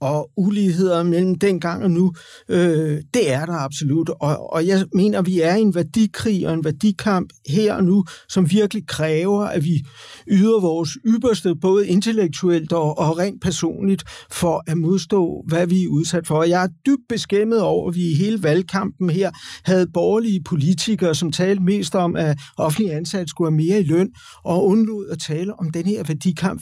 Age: 60-79